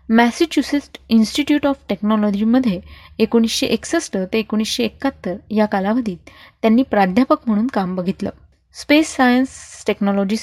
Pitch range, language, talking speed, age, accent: 210-255 Hz, Marathi, 110 wpm, 20-39, native